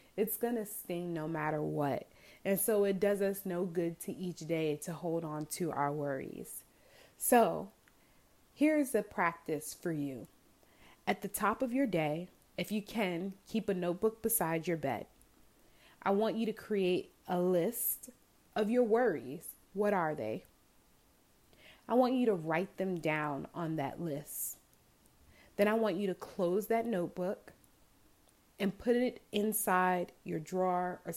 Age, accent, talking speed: 30-49, American, 160 wpm